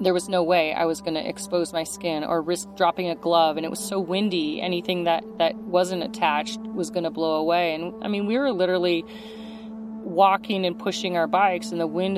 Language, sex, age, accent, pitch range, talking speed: English, female, 30-49, American, 170-220 Hz, 220 wpm